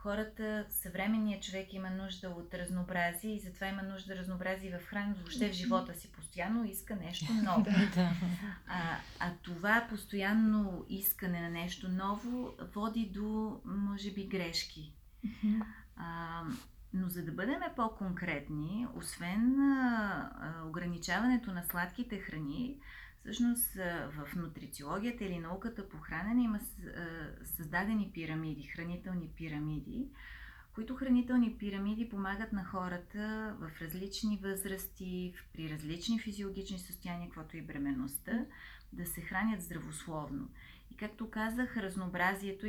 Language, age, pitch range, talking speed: Bulgarian, 30-49, 170-215 Hz, 120 wpm